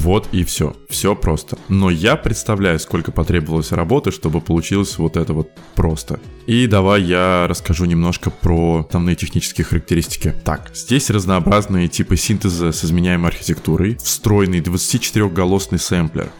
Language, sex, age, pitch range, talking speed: Russian, male, 20-39, 85-105 Hz, 135 wpm